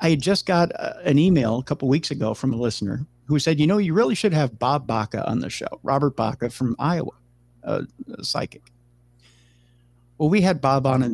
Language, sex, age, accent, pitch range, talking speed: English, male, 50-69, American, 120-145 Hz, 210 wpm